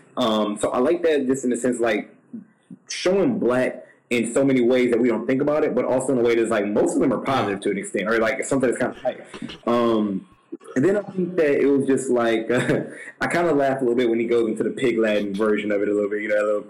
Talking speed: 285 wpm